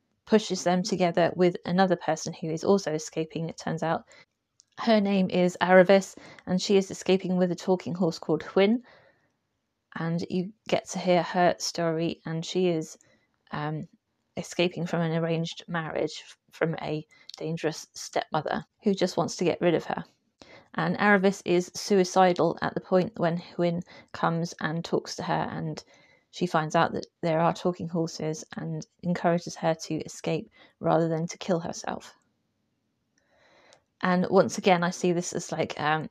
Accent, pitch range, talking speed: British, 165-185 Hz, 160 wpm